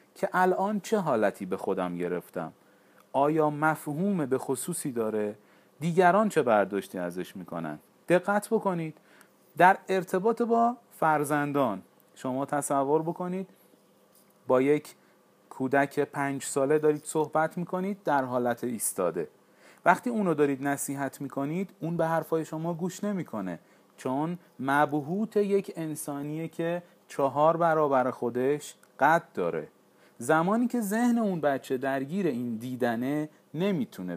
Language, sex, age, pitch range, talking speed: Persian, male, 40-59, 125-170 Hz, 120 wpm